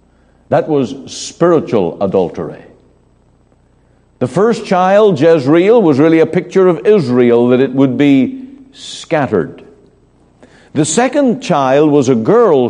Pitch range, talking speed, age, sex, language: 105-150 Hz, 120 wpm, 60-79, male, English